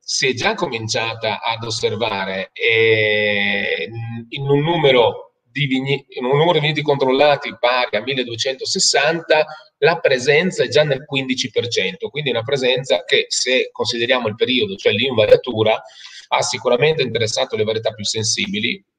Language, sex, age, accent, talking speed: Italian, male, 30-49, native, 125 wpm